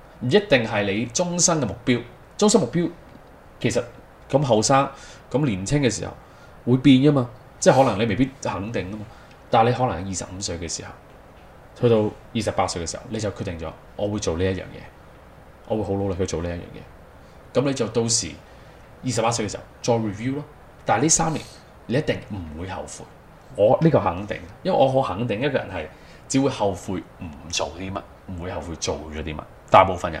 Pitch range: 100-135 Hz